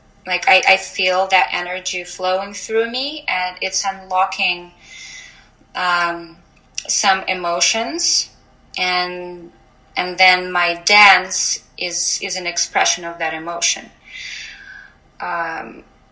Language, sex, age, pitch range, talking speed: English, female, 20-39, 170-195 Hz, 105 wpm